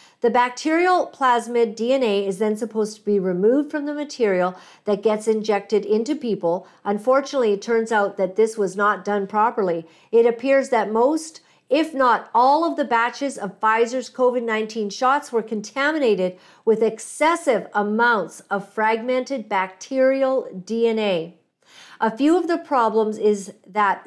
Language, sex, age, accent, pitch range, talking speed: English, female, 50-69, American, 205-250 Hz, 145 wpm